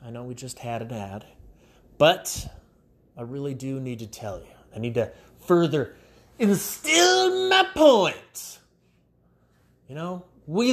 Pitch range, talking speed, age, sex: 120-180 Hz, 140 wpm, 30-49, male